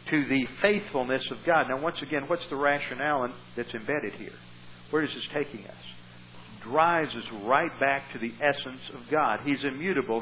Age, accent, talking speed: 60-79, American, 175 wpm